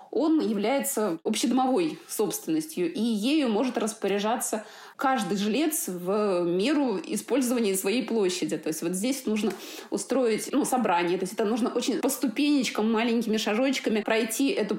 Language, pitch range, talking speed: Russian, 190-250 Hz, 140 wpm